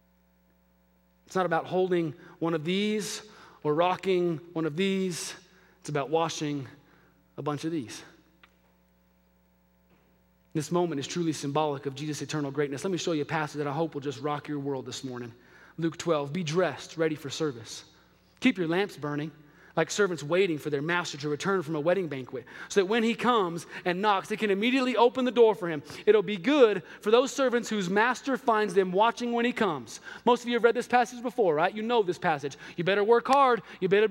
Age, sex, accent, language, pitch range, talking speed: 30-49, male, American, English, 145-210 Hz, 200 wpm